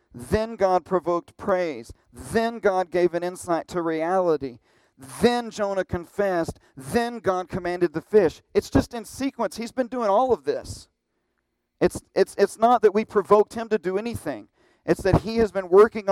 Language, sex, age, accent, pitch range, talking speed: English, male, 40-59, American, 135-180 Hz, 170 wpm